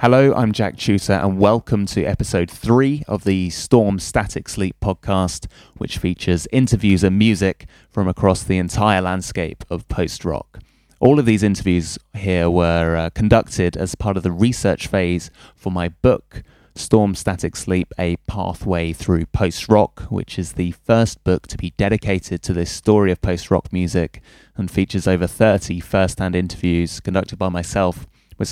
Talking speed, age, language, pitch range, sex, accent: 160 wpm, 20-39, English, 90-110 Hz, male, British